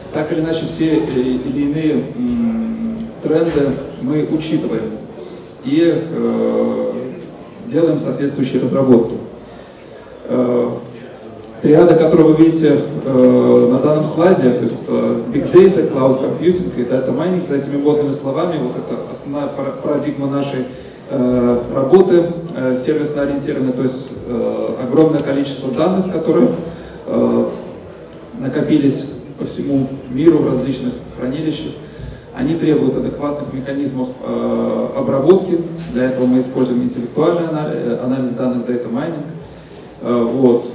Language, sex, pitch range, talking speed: Russian, male, 125-165 Hz, 105 wpm